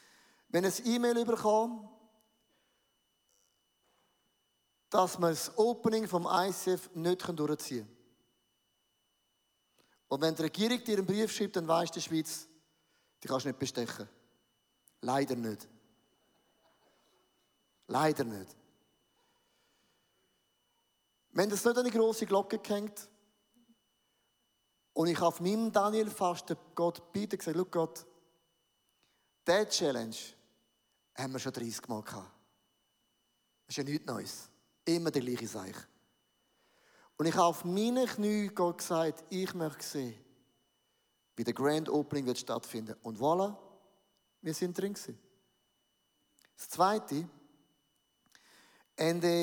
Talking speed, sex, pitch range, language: 115 wpm, male, 145-195 Hz, English